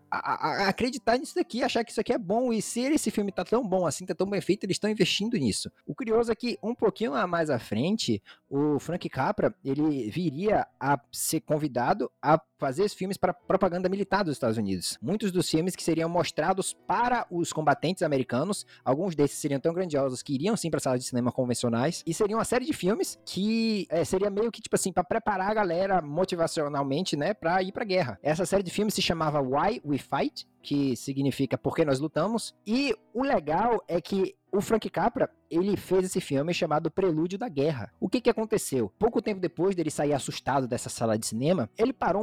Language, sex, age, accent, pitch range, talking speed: Portuguese, male, 20-39, Brazilian, 145-205 Hz, 210 wpm